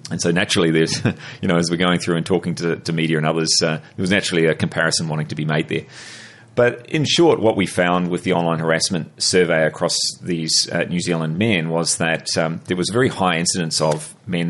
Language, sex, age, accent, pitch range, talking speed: English, male, 30-49, Australian, 80-95 Hz, 230 wpm